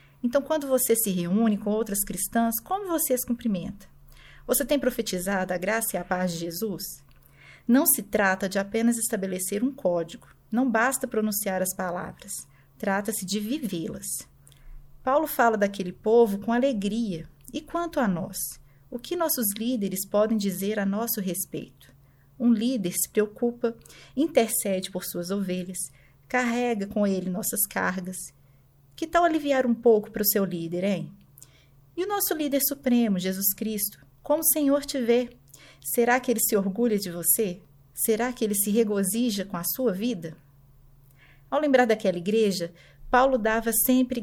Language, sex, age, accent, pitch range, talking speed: Portuguese, female, 40-59, Brazilian, 180-235 Hz, 155 wpm